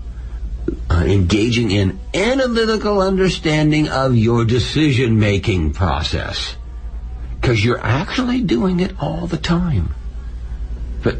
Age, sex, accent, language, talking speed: 60-79, male, American, English, 95 wpm